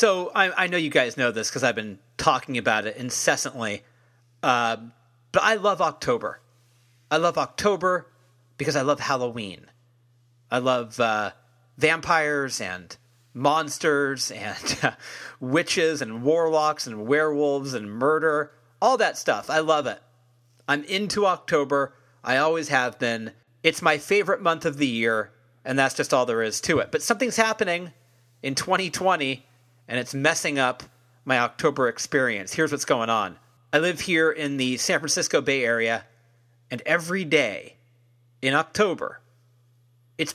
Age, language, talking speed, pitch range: 40-59, English, 150 wpm, 120-155 Hz